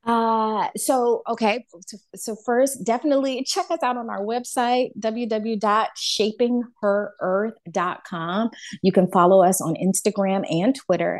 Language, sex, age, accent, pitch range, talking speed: English, female, 30-49, American, 170-230 Hz, 115 wpm